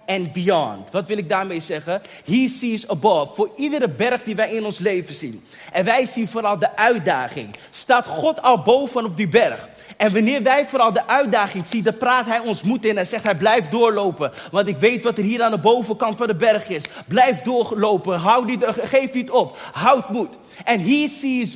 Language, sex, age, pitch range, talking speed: Dutch, male, 30-49, 205-255 Hz, 210 wpm